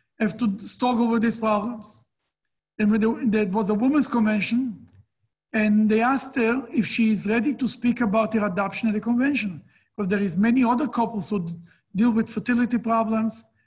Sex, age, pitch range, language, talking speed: male, 50-69, 190-235 Hz, English, 175 wpm